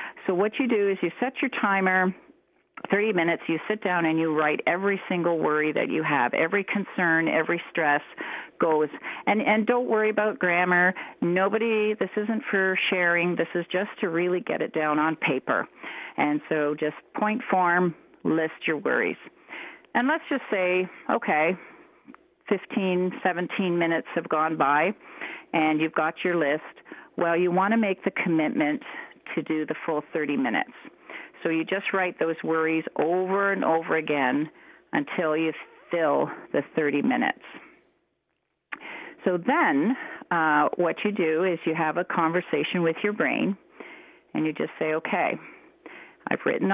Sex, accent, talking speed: female, American, 160 wpm